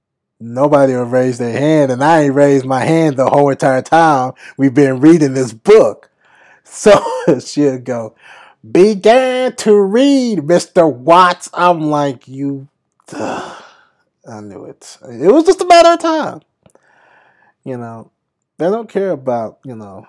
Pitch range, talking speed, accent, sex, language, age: 130-215 Hz, 145 wpm, American, male, English, 30-49